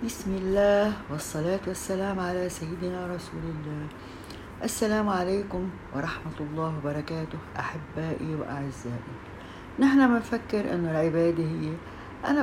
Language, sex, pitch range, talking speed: Arabic, female, 140-195 Hz, 100 wpm